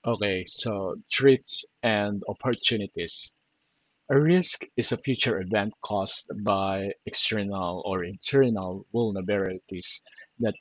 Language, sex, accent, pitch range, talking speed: Filipino, male, native, 100-125 Hz, 100 wpm